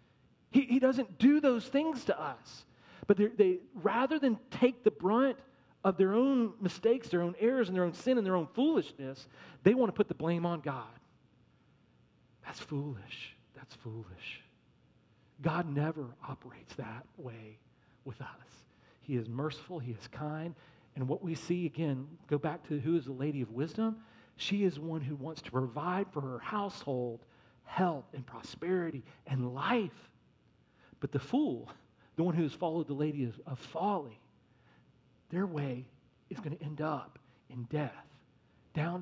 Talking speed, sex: 160 wpm, male